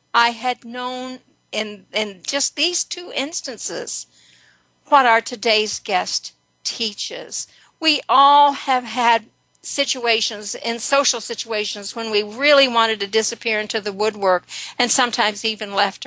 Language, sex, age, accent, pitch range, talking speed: English, female, 60-79, American, 205-250 Hz, 130 wpm